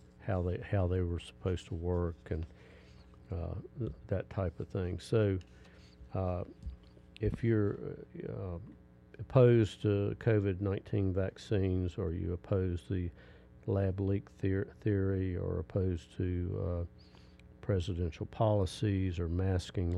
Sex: male